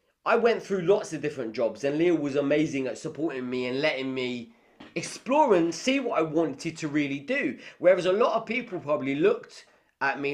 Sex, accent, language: male, British, English